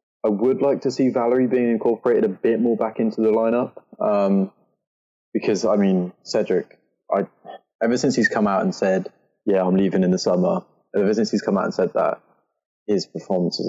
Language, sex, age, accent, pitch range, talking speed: English, male, 20-39, British, 95-110 Hz, 195 wpm